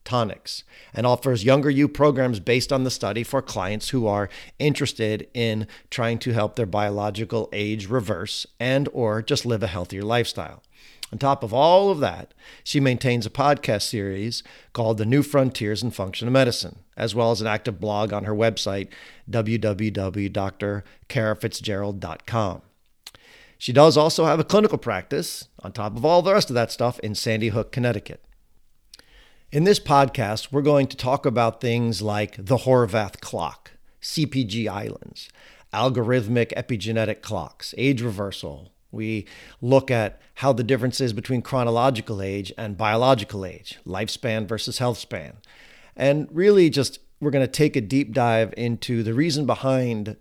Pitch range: 105-135 Hz